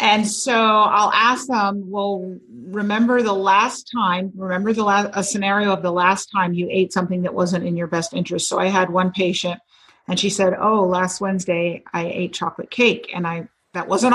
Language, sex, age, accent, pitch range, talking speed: English, female, 40-59, American, 180-215 Hz, 200 wpm